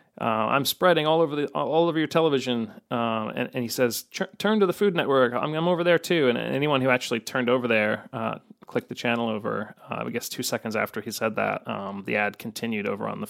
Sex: male